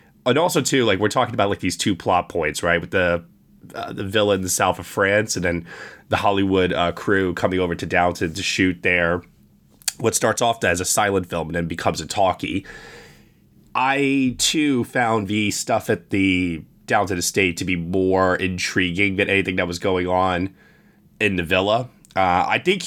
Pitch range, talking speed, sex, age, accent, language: 90-115 Hz, 190 wpm, male, 20-39, American, English